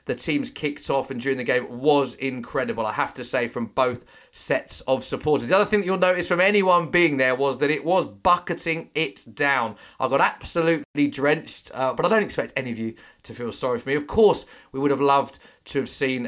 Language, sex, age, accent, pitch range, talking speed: English, male, 30-49, British, 135-195 Hz, 230 wpm